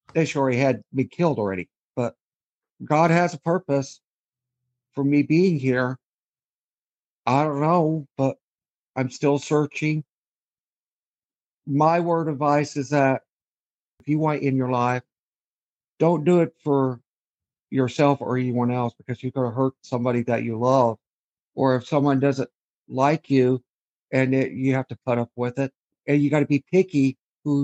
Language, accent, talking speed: English, American, 160 wpm